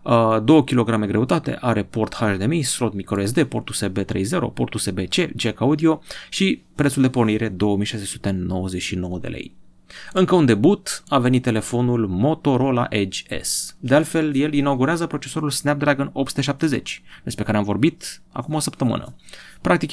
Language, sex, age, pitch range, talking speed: Romanian, male, 30-49, 110-150 Hz, 140 wpm